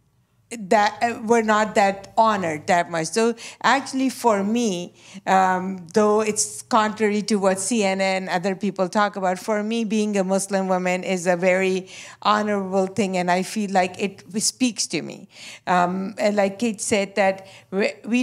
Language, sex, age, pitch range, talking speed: English, female, 50-69, 185-220 Hz, 160 wpm